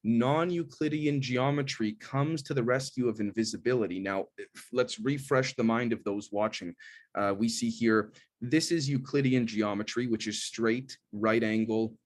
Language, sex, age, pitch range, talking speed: English, male, 30-49, 105-120 Hz, 145 wpm